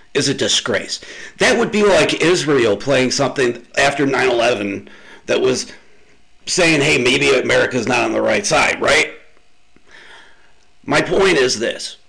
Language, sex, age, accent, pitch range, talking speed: English, male, 40-59, American, 130-185 Hz, 140 wpm